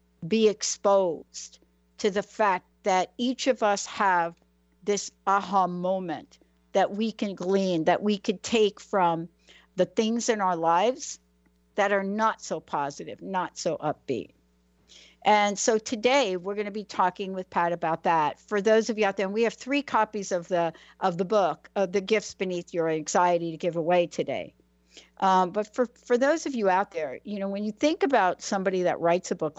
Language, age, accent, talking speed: English, 60-79, American, 185 wpm